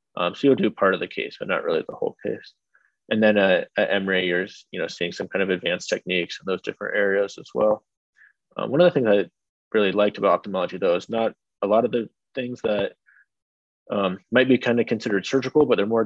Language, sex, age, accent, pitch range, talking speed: English, male, 20-39, American, 100-120 Hz, 235 wpm